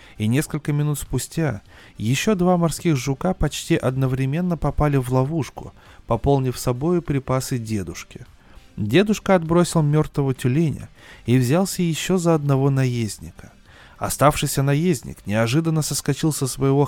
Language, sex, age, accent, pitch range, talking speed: Russian, male, 20-39, native, 125-165 Hz, 115 wpm